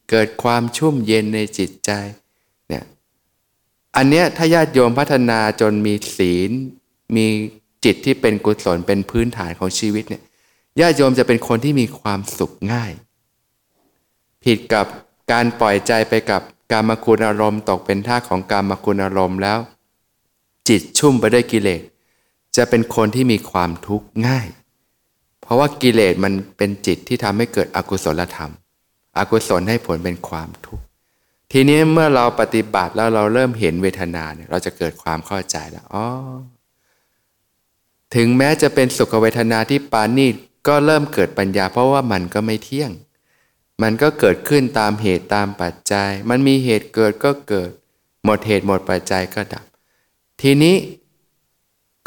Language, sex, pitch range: Thai, male, 100-125 Hz